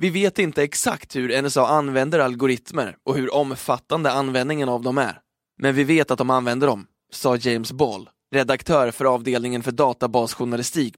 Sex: male